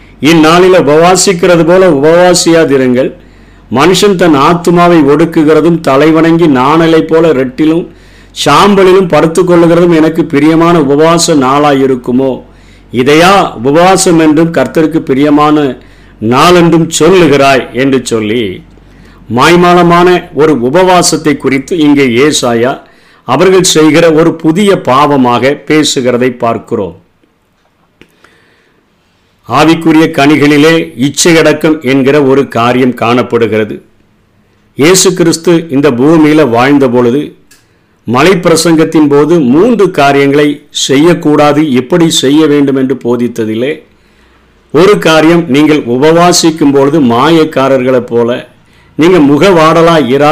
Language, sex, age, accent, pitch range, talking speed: Tamil, male, 50-69, native, 130-165 Hz, 80 wpm